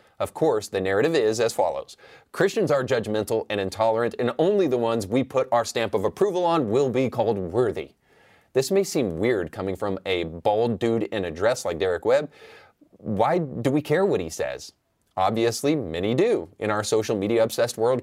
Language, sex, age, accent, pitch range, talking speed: English, male, 30-49, American, 110-145 Hz, 190 wpm